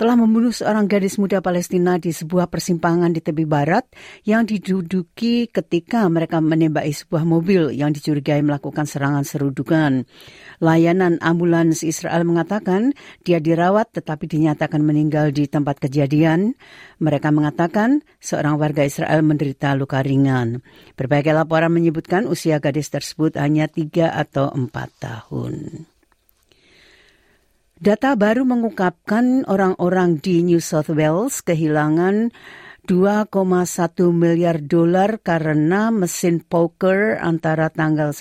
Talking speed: 115 wpm